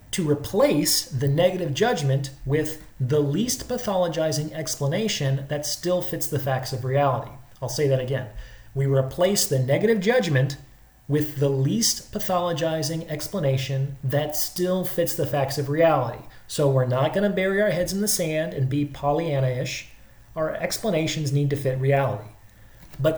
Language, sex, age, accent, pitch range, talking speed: English, male, 30-49, American, 130-165 Hz, 150 wpm